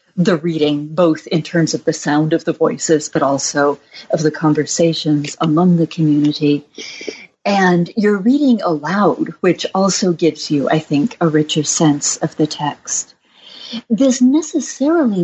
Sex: female